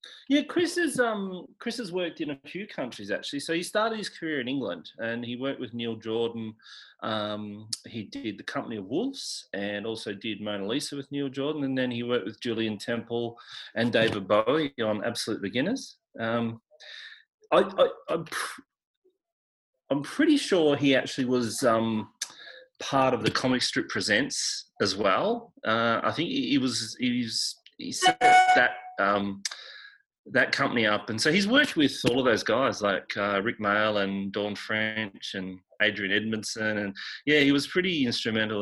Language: English